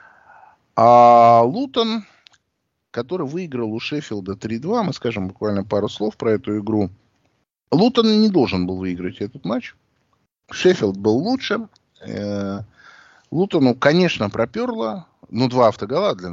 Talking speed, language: 120 wpm, Russian